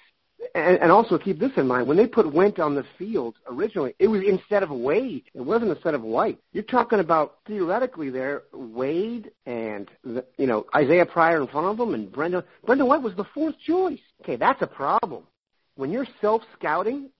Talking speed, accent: 190 wpm, American